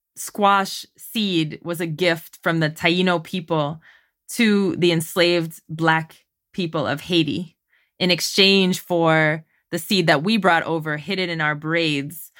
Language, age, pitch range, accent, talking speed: English, 20-39, 155-185 Hz, American, 140 wpm